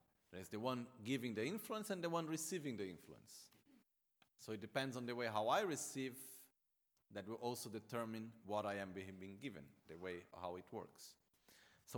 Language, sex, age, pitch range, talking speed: Italian, male, 40-59, 100-125 Hz, 180 wpm